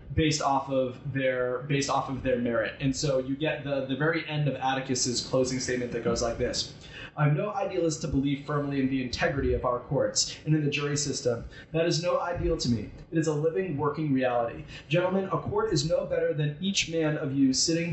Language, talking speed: English, 220 wpm